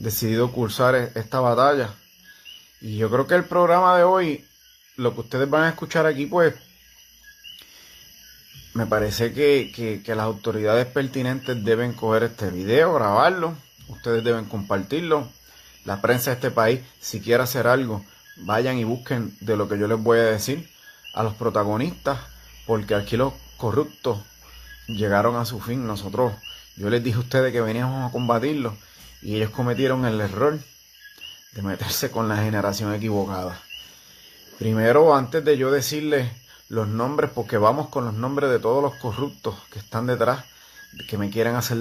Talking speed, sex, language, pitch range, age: 160 wpm, male, Spanish, 110-130 Hz, 30-49